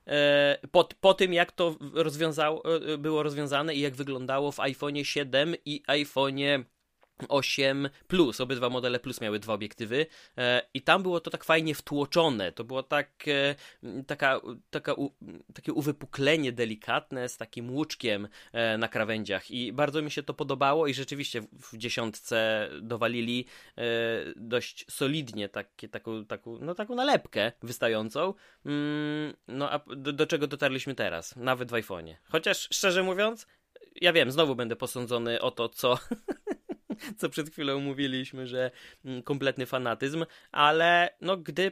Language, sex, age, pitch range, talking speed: Polish, male, 20-39, 120-150 Hz, 145 wpm